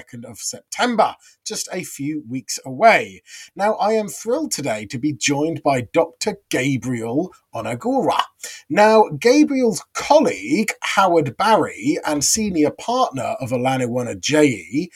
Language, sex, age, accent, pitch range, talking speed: English, male, 30-49, British, 130-210 Hz, 120 wpm